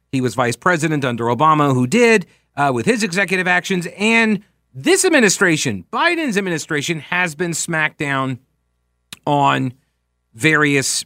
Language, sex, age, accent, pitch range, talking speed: English, male, 40-59, American, 125-200 Hz, 130 wpm